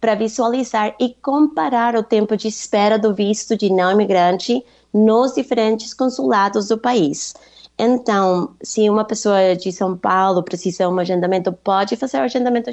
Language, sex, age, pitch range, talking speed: Portuguese, female, 20-39, 185-235 Hz, 150 wpm